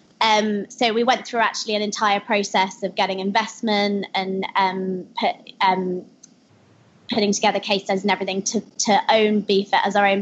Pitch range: 200-235 Hz